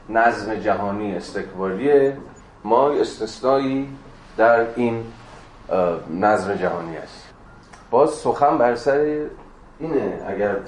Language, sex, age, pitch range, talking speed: Persian, male, 30-49, 95-120 Hz, 90 wpm